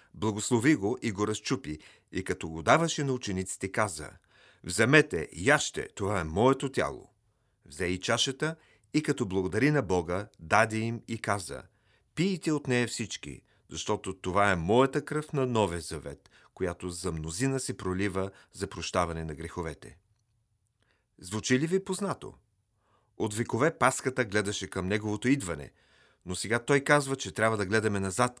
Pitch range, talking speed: 95-130 Hz, 150 wpm